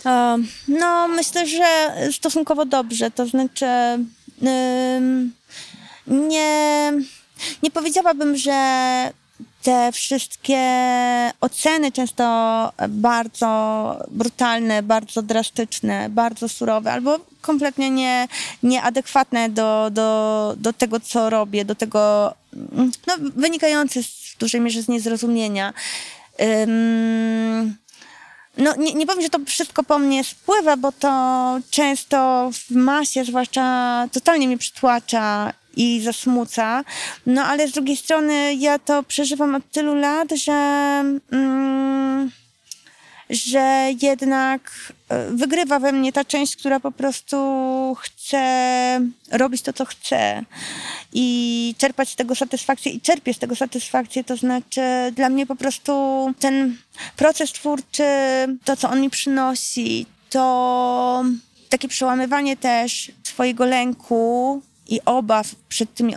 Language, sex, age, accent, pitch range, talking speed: Polish, female, 20-39, native, 240-280 Hz, 110 wpm